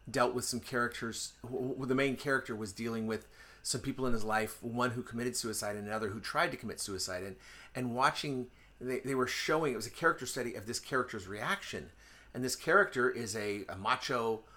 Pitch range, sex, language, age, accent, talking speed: 110-135 Hz, male, English, 40-59, American, 200 wpm